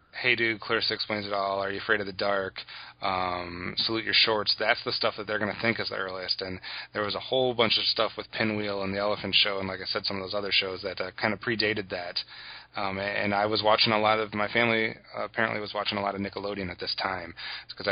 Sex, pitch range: male, 95-110 Hz